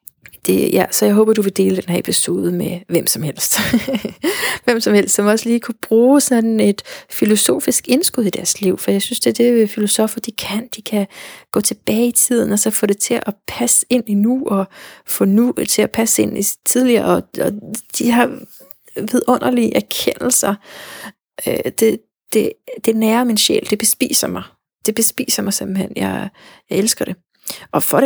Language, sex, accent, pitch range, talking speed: Danish, female, native, 190-235 Hz, 190 wpm